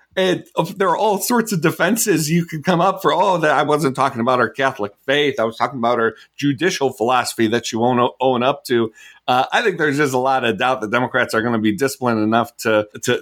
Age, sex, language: 40-59, male, English